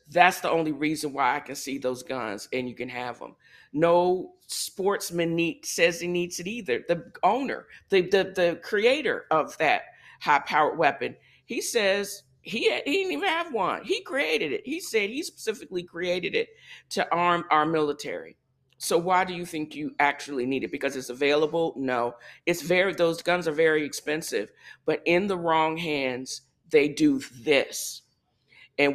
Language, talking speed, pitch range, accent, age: English, 175 wpm, 135-175 Hz, American, 50-69